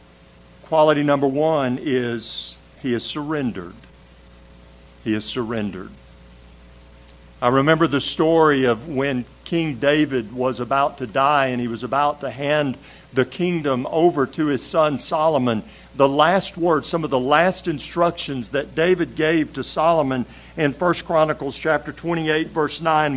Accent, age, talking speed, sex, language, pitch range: American, 50-69, 140 wpm, male, English, 120-185 Hz